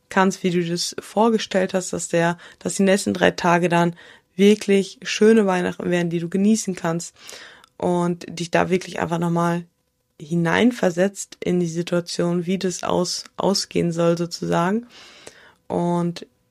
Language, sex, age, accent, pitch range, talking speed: German, female, 20-39, German, 165-190 Hz, 140 wpm